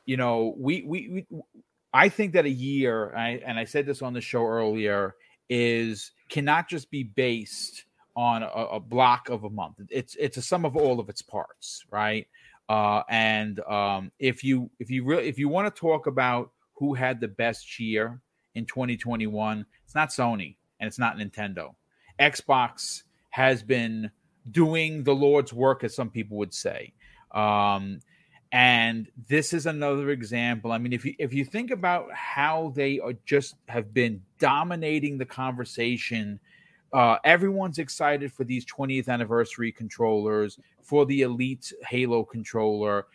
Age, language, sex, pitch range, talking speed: 40-59, English, male, 115-140 Hz, 165 wpm